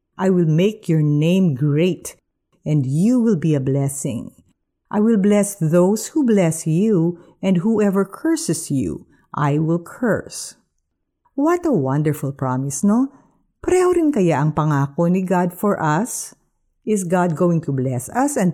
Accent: native